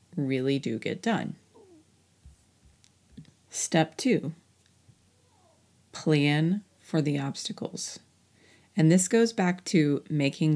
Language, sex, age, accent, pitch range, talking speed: English, female, 30-49, American, 140-185 Hz, 90 wpm